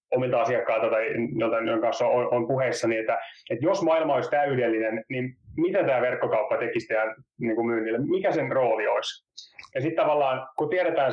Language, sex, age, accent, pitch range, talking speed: Finnish, male, 30-49, native, 120-175 Hz, 155 wpm